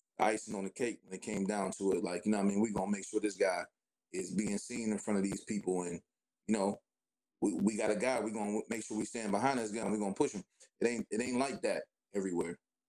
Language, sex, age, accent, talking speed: English, male, 20-39, American, 275 wpm